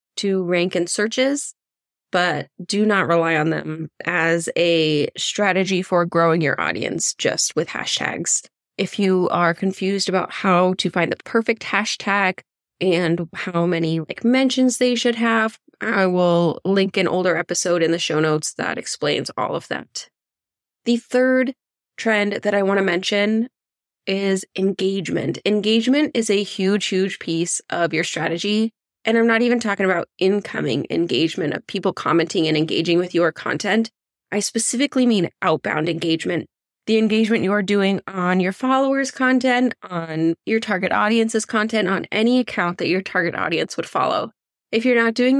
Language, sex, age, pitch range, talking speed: English, female, 20-39, 175-225 Hz, 160 wpm